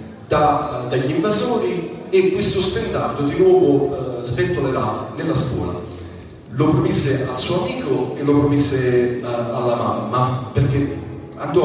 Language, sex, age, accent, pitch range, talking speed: Italian, male, 40-59, native, 115-145 Hz, 135 wpm